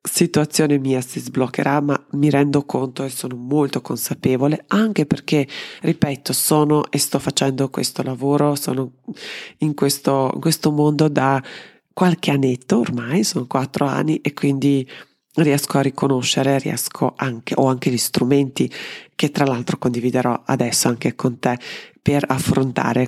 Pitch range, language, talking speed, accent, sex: 130-155 Hz, Italian, 145 wpm, native, female